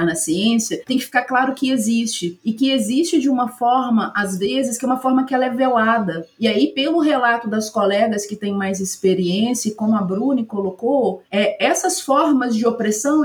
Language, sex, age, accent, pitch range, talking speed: Portuguese, female, 30-49, Brazilian, 215-280 Hz, 190 wpm